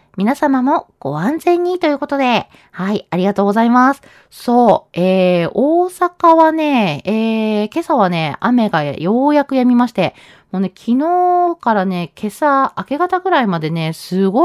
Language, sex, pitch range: Japanese, female, 180-265 Hz